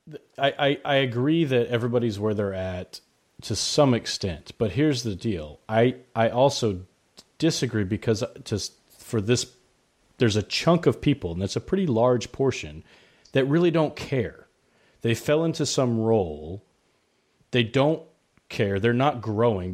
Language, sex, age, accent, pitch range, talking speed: English, male, 30-49, American, 90-120 Hz, 150 wpm